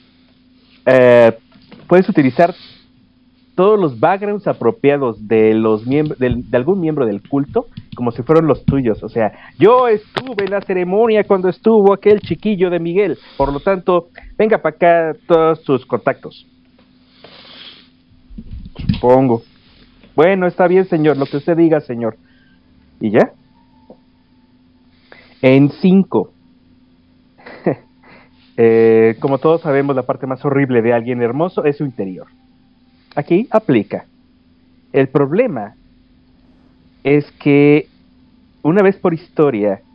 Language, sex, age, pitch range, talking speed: Spanish, male, 50-69, 115-170 Hz, 120 wpm